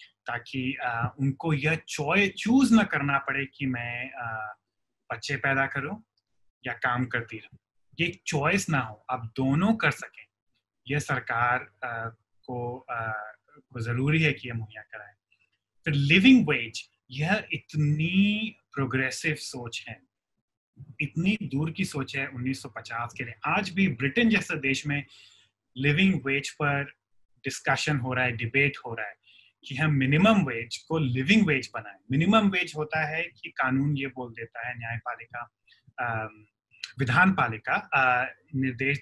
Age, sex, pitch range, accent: 20-39, male, 120-175 Hz, native